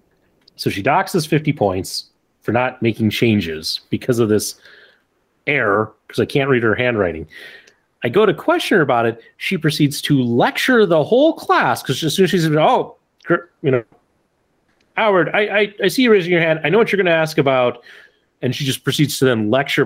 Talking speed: 200 wpm